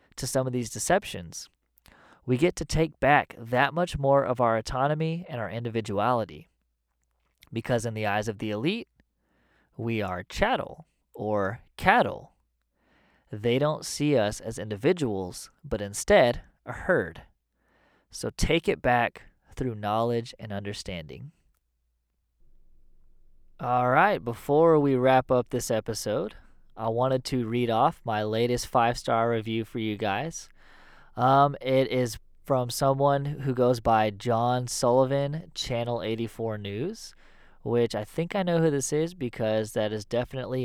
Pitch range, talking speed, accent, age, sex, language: 105-130 Hz, 140 wpm, American, 20-39, male, English